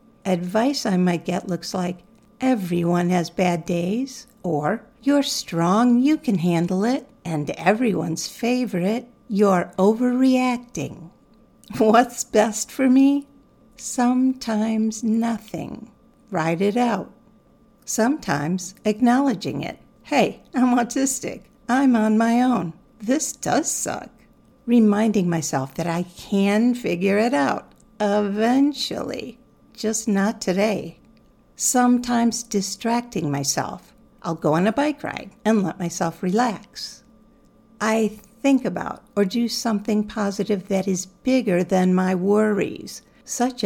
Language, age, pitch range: English, 60-79, 180-240 Hz